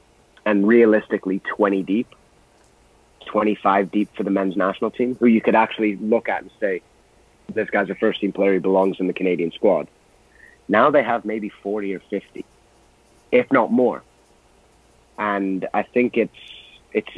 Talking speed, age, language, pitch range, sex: 155 wpm, 30-49, English, 95-105 Hz, male